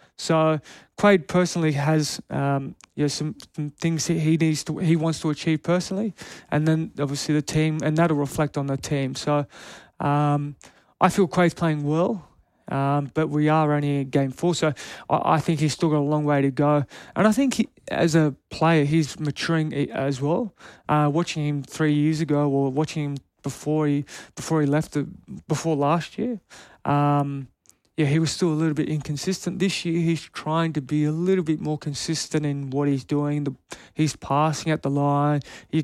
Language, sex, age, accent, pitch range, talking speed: English, male, 20-39, Australian, 145-165 Hz, 195 wpm